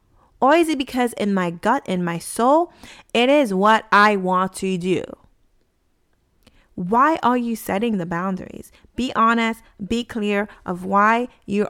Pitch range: 185-245 Hz